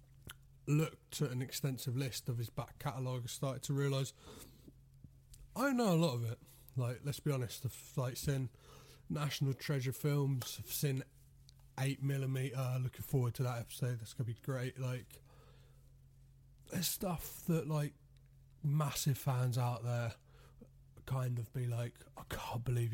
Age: 30-49